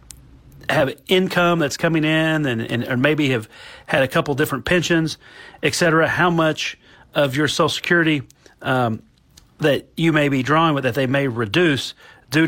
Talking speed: 170 wpm